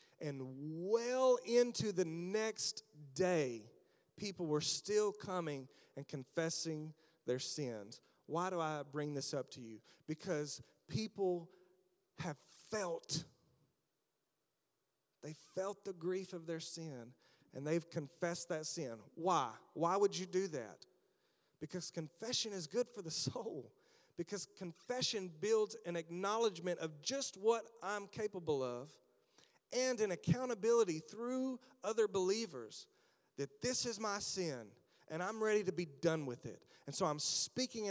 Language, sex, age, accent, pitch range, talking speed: English, male, 40-59, American, 150-200 Hz, 135 wpm